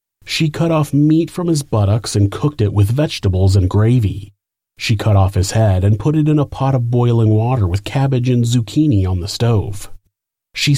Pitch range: 100-135 Hz